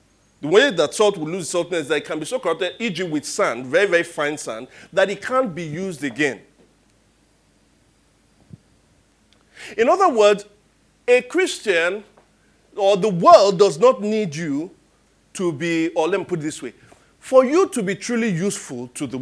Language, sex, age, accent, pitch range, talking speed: English, male, 40-59, Nigerian, 160-250 Hz, 175 wpm